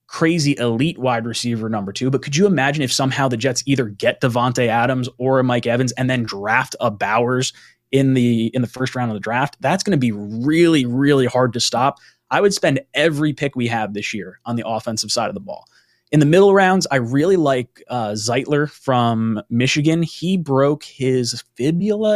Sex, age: male, 20-39